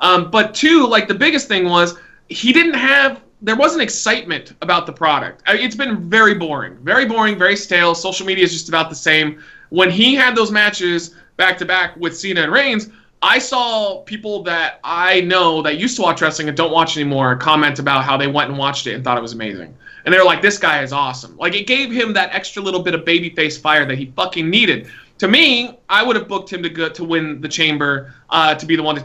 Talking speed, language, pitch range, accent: 230 wpm, English, 160-220 Hz, American